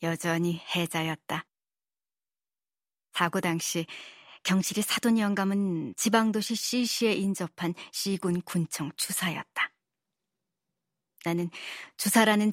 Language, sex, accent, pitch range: Korean, male, native, 175-215 Hz